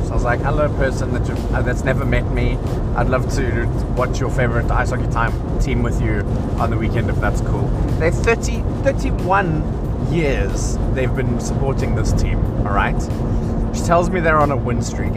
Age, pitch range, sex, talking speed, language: 30-49, 115-125 Hz, male, 190 wpm, English